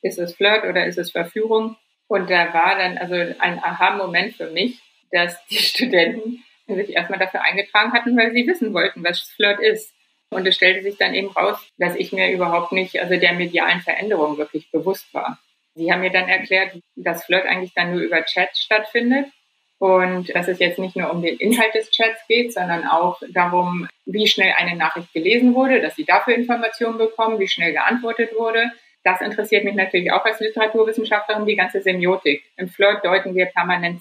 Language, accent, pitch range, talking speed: German, German, 175-220 Hz, 190 wpm